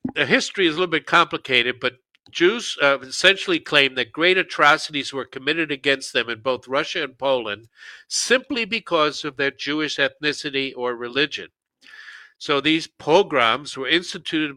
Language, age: English, 50-69